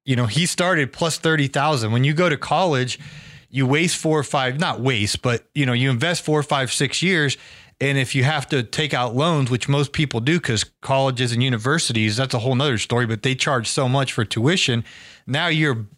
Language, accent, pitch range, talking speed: English, American, 125-160 Hz, 220 wpm